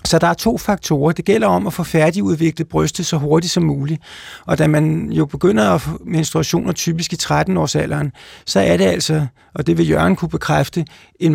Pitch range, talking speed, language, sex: 150-175 Hz, 200 wpm, Danish, male